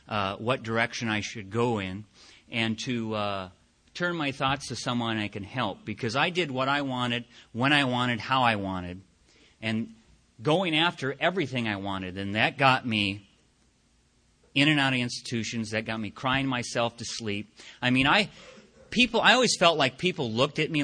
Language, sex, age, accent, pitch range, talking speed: English, male, 40-59, American, 110-135 Hz, 180 wpm